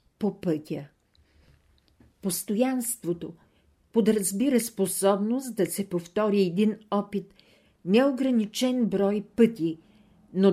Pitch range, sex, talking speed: 170-215 Hz, female, 80 wpm